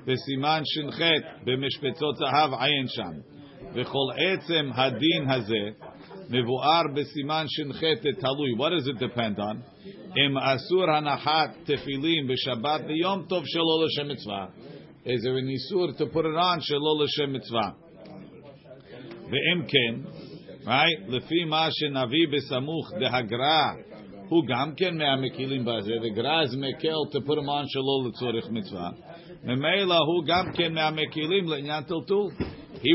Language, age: English, 50-69